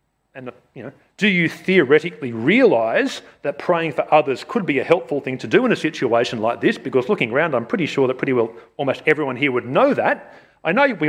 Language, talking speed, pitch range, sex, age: English, 220 wpm, 130-215 Hz, male, 40-59